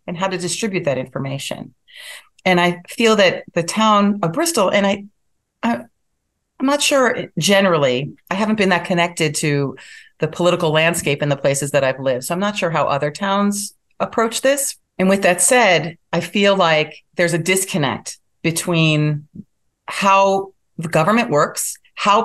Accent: American